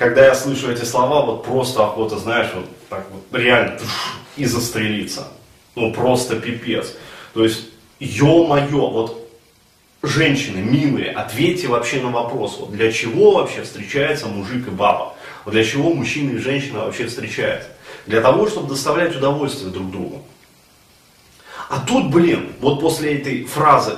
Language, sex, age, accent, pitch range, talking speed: Russian, male, 30-49, native, 115-145 Hz, 145 wpm